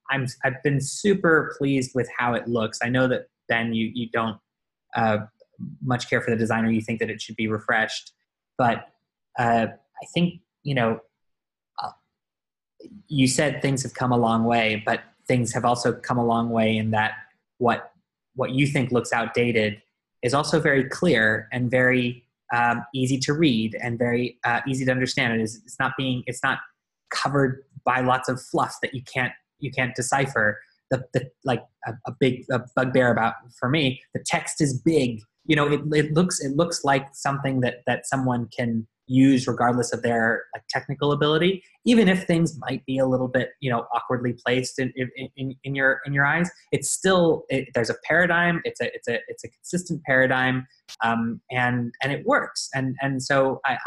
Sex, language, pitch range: male, English, 120-140 Hz